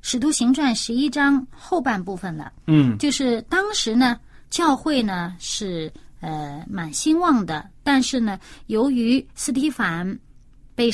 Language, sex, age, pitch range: Chinese, female, 30-49, 200-285 Hz